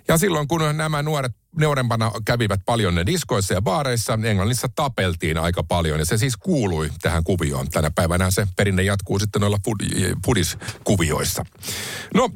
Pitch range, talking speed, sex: 95-130 Hz, 155 wpm, male